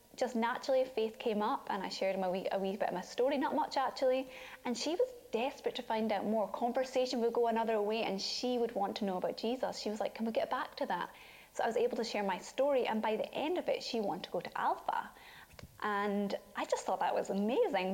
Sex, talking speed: female, 255 wpm